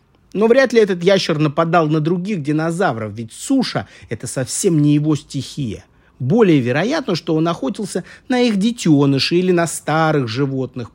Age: 30-49